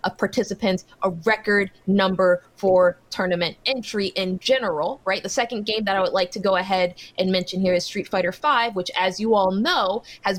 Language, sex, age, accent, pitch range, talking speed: English, female, 20-39, American, 185-230 Hz, 195 wpm